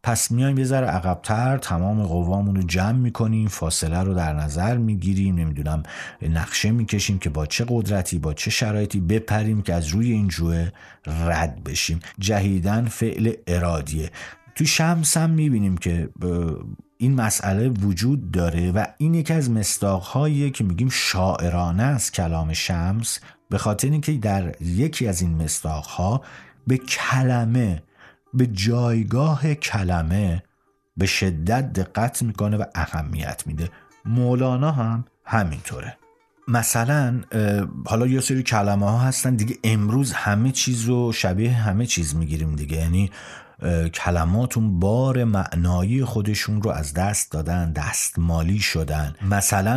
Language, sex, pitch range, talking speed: Persian, male, 85-120 Hz, 135 wpm